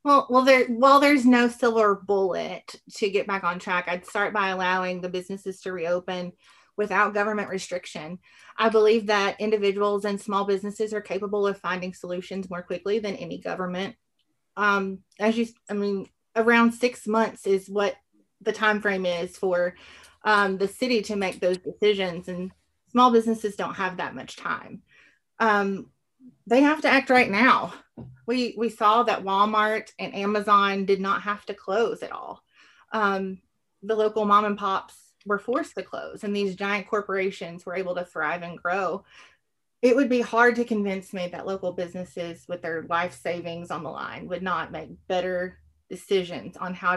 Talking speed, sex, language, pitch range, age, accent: 175 wpm, female, English, 180-215 Hz, 30-49, American